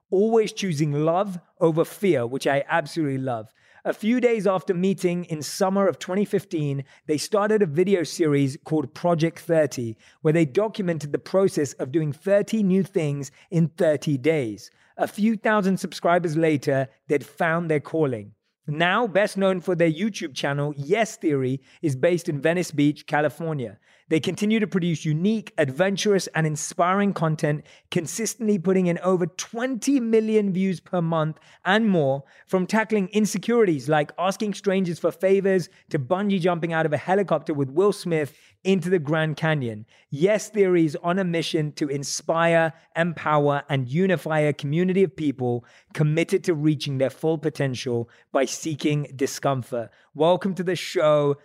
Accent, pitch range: British, 150-190 Hz